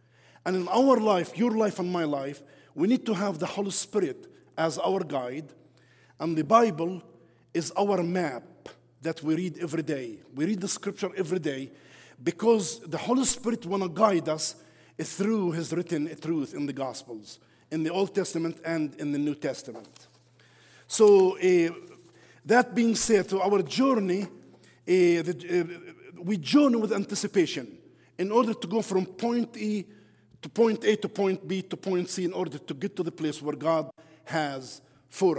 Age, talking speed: 50-69, 175 wpm